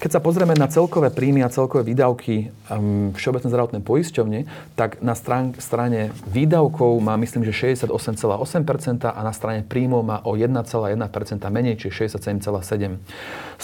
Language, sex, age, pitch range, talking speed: Slovak, male, 40-59, 110-135 Hz, 130 wpm